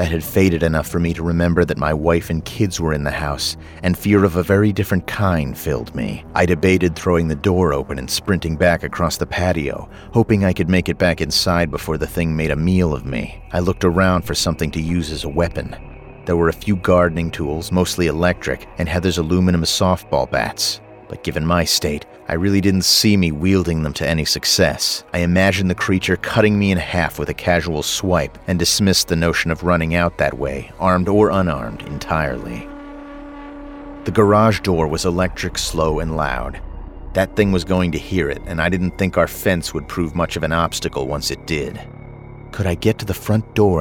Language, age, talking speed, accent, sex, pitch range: English, 30-49, 210 wpm, American, male, 80-95 Hz